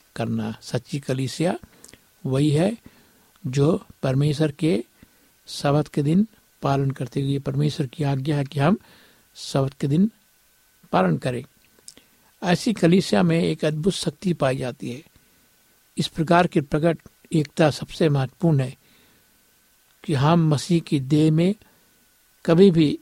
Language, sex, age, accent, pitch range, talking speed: Hindi, male, 60-79, native, 145-170 Hz, 130 wpm